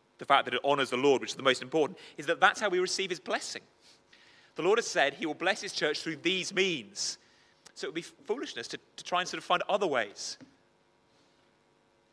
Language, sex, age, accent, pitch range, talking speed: English, male, 30-49, British, 125-185 Hz, 230 wpm